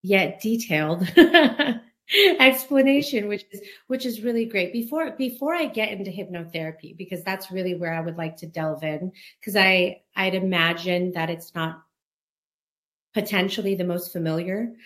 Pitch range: 160-200 Hz